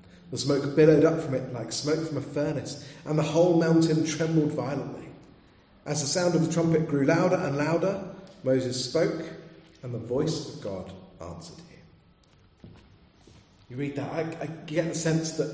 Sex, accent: male, British